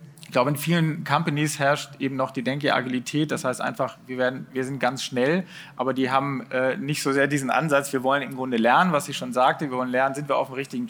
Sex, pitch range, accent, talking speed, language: male, 130-150 Hz, German, 250 wpm, German